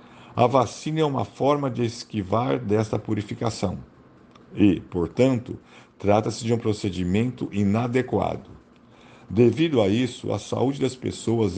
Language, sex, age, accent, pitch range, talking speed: Portuguese, male, 50-69, Brazilian, 100-125 Hz, 120 wpm